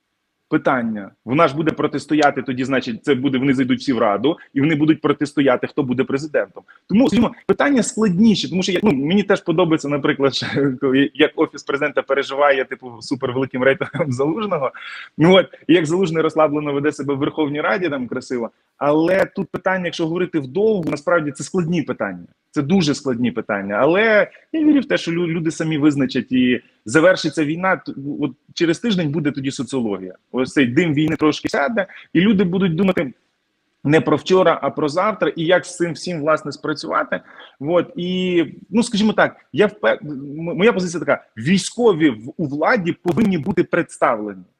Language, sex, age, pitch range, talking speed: Ukrainian, male, 20-39, 135-180 Hz, 165 wpm